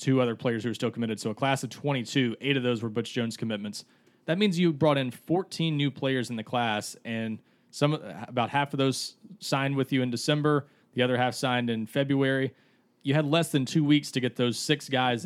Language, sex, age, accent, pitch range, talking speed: English, male, 30-49, American, 115-140 Hz, 230 wpm